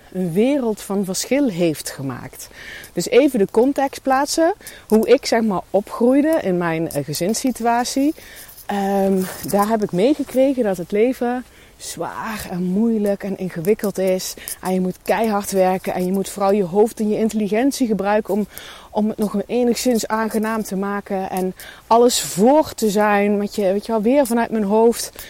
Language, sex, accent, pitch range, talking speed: Dutch, female, Dutch, 180-230 Hz, 160 wpm